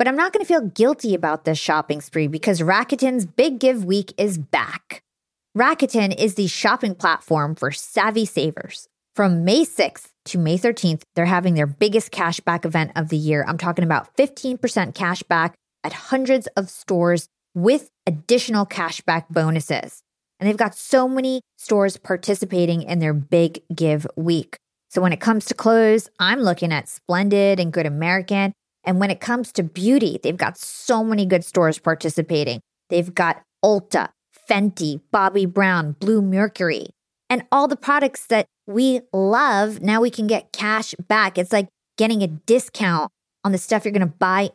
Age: 30-49